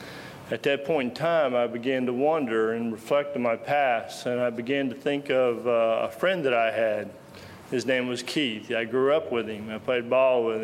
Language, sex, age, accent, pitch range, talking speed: English, male, 40-59, American, 115-130 Hz, 220 wpm